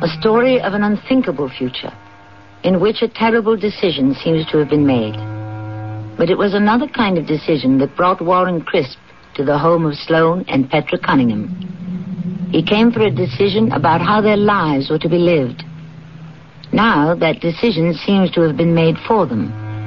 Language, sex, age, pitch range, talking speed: English, female, 60-79, 145-190 Hz, 175 wpm